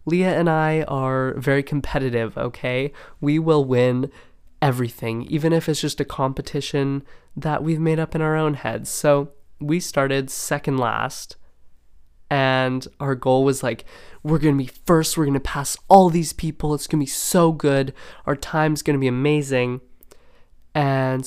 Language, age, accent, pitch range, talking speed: English, 20-39, American, 130-150 Hz, 170 wpm